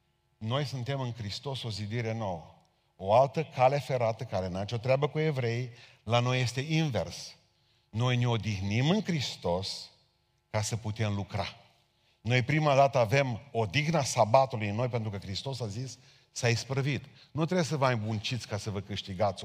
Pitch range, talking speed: 105-130 Hz, 165 wpm